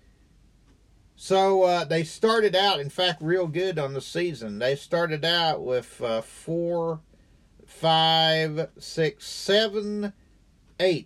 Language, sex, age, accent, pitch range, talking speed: English, male, 50-69, American, 135-190 Hz, 120 wpm